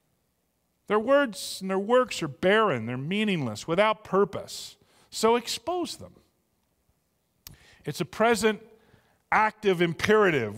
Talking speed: 110 wpm